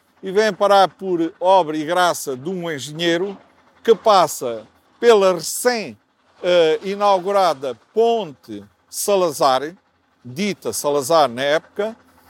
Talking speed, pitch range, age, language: 100 wpm, 175-225 Hz, 50-69, Portuguese